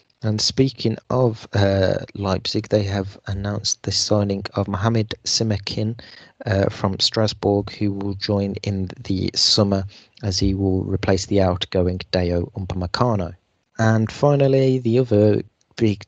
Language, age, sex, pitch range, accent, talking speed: English, 30-49, male, 100-120 Hz, British, 130 wpm